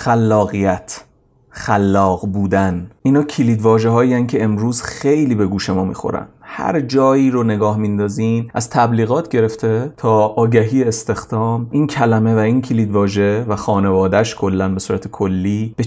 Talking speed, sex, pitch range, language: 145 wpm, male, 105-135 Hz, Persian